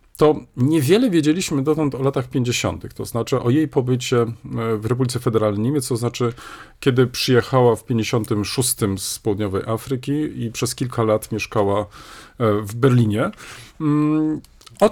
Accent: native